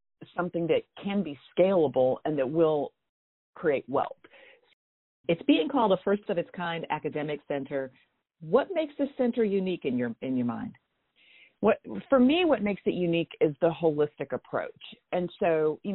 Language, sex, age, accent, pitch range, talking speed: English, female, 50-69, American, 155-200 Hz, 165 wpm